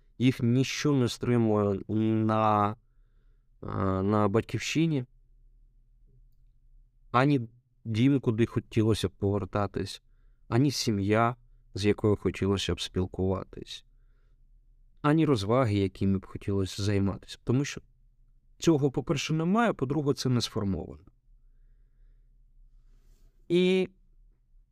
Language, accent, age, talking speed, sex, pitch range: Ukrainian, native, 20-39, 90 wpm, male, 105-125 Hz